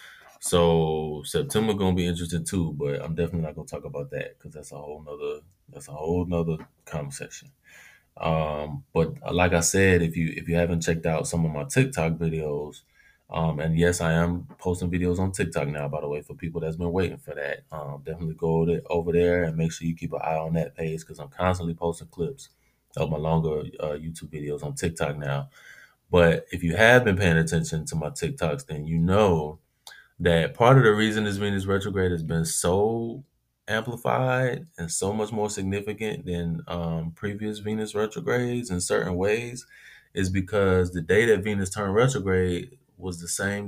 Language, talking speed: English, 195 wpm